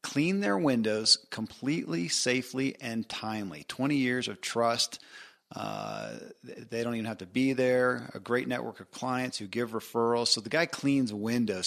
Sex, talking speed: male, 165 wpm